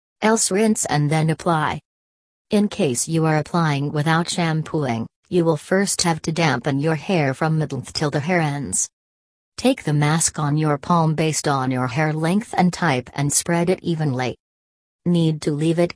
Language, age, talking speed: English, 40-59, 175 wpm